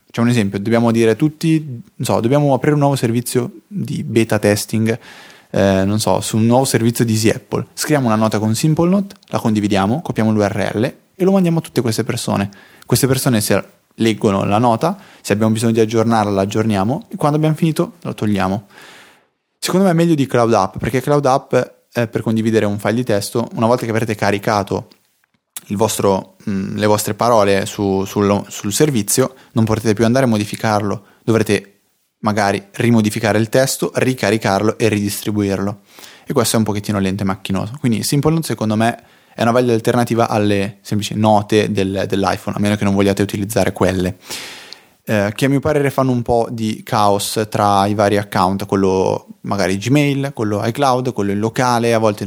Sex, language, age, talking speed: male, Italian, 20-39, 180 wpm